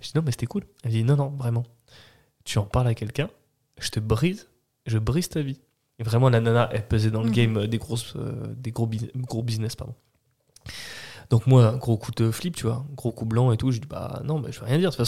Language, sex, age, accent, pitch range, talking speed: French, male, 20-39, French, 115-140 Hz, 265 wpm